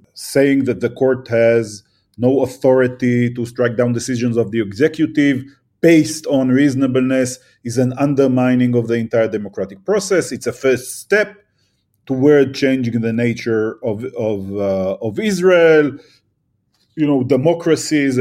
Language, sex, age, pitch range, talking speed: English, male, 40-59, 120-150 Hz, 135 wpm